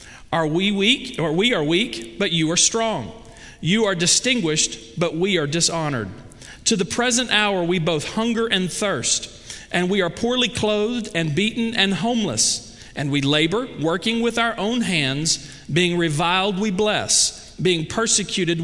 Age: 40-59